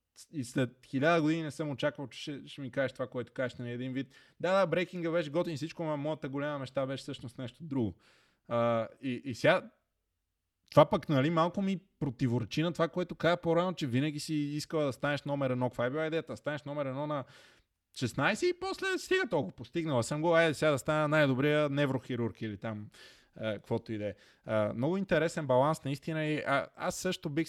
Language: Bulgarian